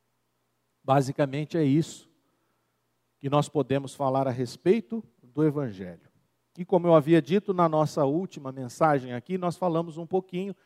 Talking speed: 140 wpm